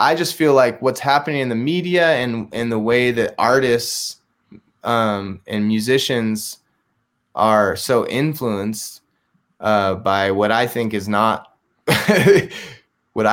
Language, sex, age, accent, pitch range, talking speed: English, male, 20-39, American, 100-130 Hz, 130 wpm